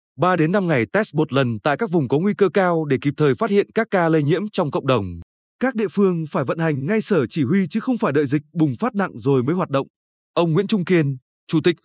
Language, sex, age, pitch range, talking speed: Vietnamese, male, 20-39, 150-200 Hz, 275 wpm